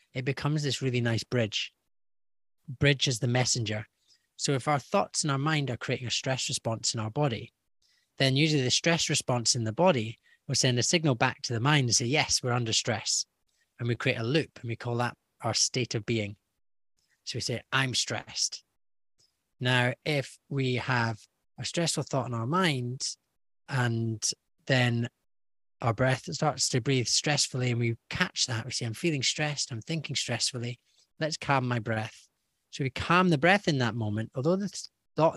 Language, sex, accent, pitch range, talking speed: English, male, British, 115-145 Hz, 185 wpm